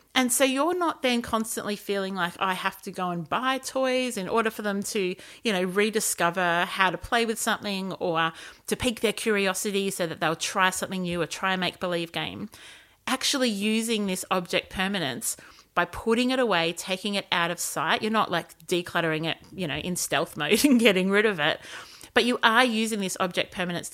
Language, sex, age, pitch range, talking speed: English, female, 30-49, 180-230 Hz, 205 wpm